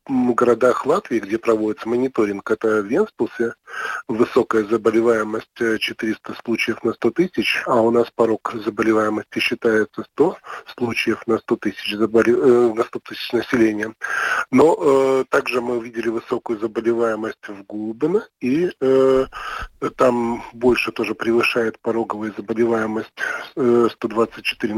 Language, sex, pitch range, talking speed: Russian, male, 110-125 Hz, 110 wpm